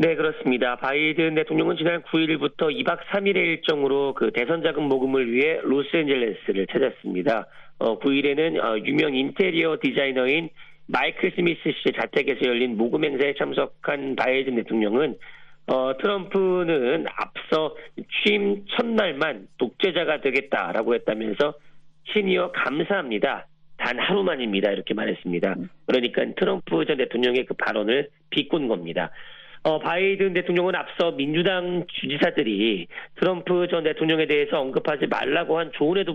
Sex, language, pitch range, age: male, Korean, 135-180 Hz, 40-59